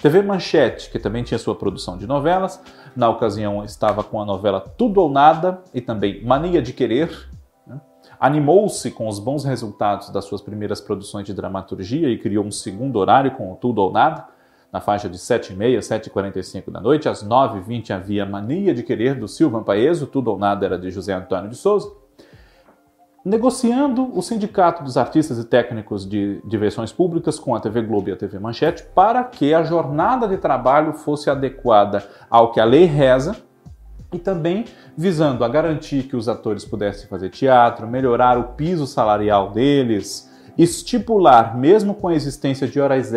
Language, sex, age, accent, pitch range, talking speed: Portuguese, male, 40-59, Brazilian, 100-155 Hz, 170 wpm